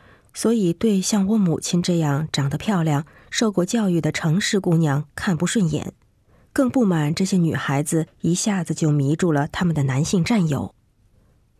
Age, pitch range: 20-39, 145-195 Hz